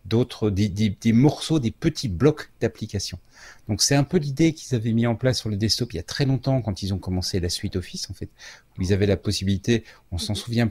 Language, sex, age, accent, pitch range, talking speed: French, male, 40-59, French, 90-120 Hz, 250 wpm